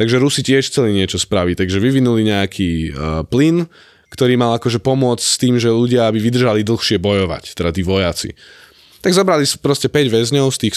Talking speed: 185 wpm